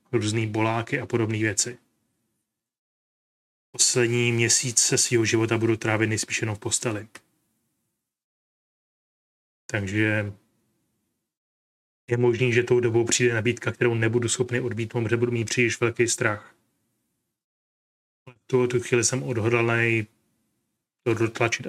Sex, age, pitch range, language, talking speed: male, 30-49, 110-120 Hz, Czech, 115 wpm